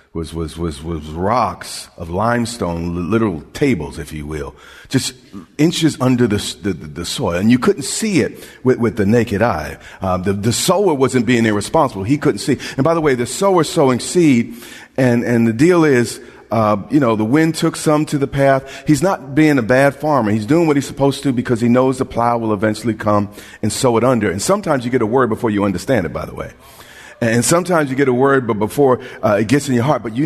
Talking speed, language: 230 wpm, English